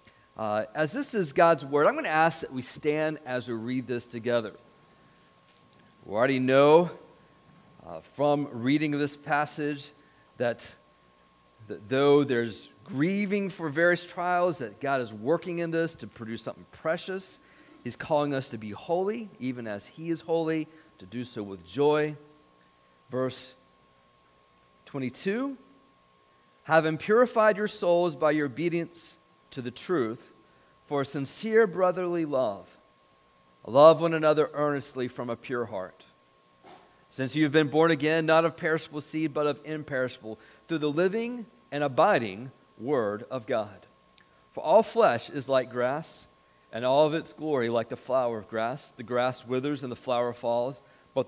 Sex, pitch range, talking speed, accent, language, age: male, 100-160 Hz, 155 wpm, American, English, 40-59